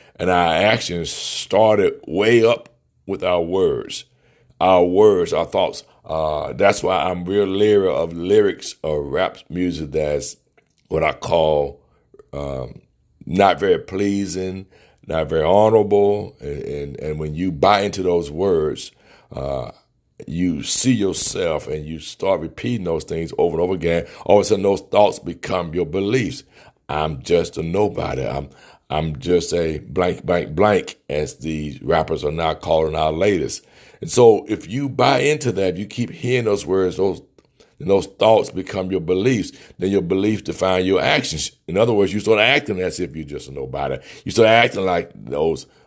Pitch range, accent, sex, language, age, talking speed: 80-115 Hz, American, male, English, 60-79, 170 wpm